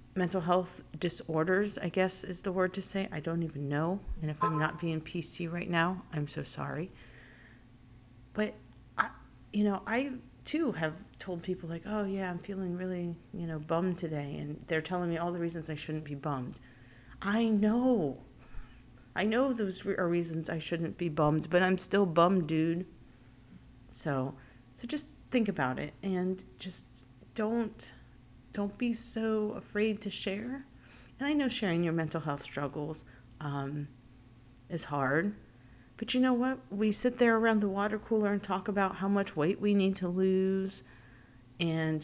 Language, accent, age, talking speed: English, American, 40-59, 170 wpm